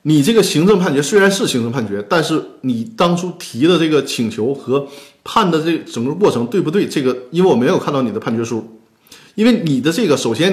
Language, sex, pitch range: Chinese, male, 120-175 Hz